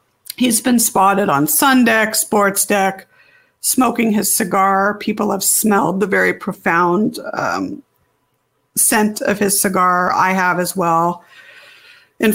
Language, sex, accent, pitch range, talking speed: English, female, American, 175-210 Hz, 130 wpm